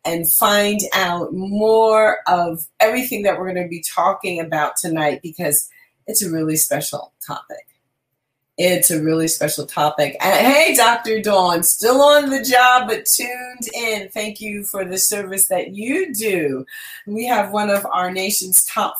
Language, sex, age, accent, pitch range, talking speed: English, female, 30-49, American, 165-240 Hz, 160 wpm